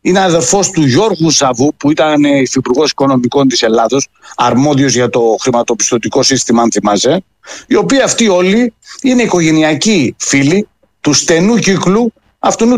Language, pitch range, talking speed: Greek, 135-195 Hz, 135 wpm